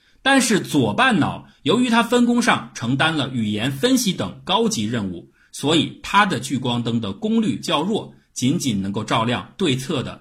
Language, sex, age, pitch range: Chinese, male, 50-69, 105-170 Hz